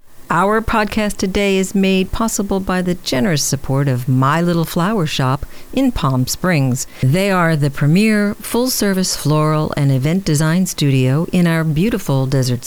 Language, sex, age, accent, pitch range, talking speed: English, female, 50-69, American, 145-210 Hz, 150 wpm